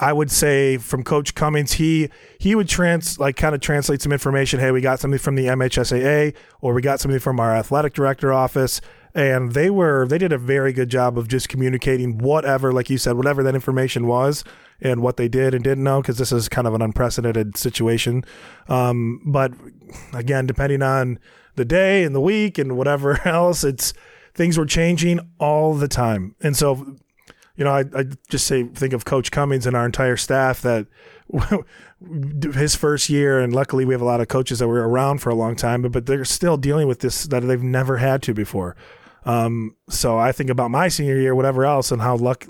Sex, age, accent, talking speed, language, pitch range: male, 30-49, American, 210 wpm, English, 125-145 Hz